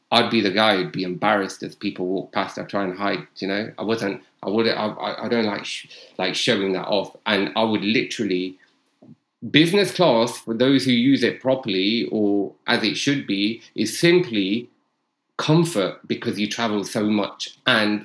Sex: male